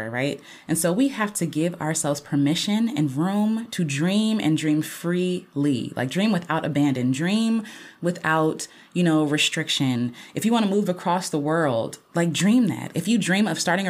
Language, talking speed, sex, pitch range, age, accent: English, 175 wpm, female, 145-195 Hz, 20-39, American